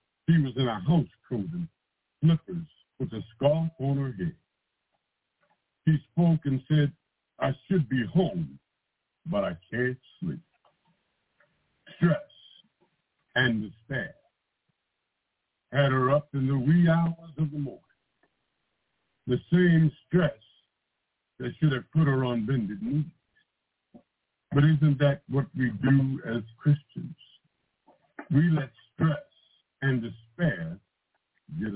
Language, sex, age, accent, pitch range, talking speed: English, male, 60-79, American, 130-165 Hz, 120 wpm